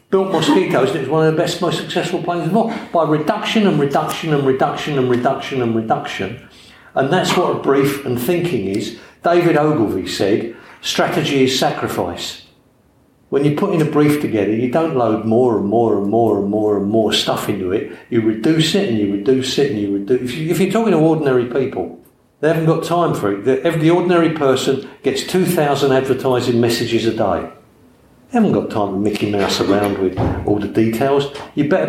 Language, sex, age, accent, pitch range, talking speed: English, male, 50-69, British, 115-155 Hz, 195 wpm